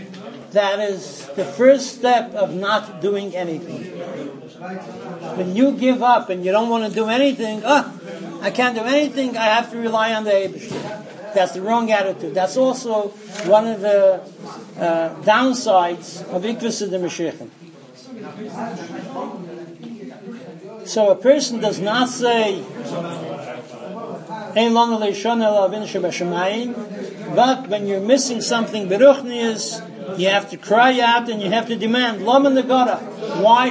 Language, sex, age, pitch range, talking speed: English, male, 60-79, 190-230 Hz, 130 wpm